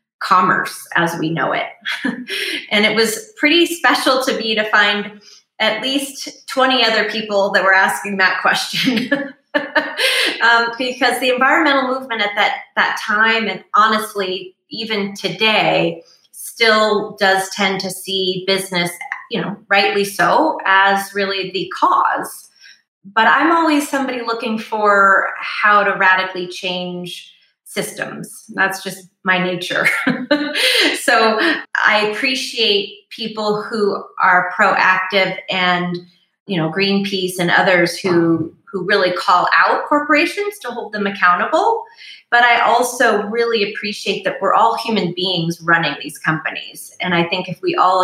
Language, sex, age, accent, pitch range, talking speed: English, female, 20-39, American, 185-235 Hz, 135 wpm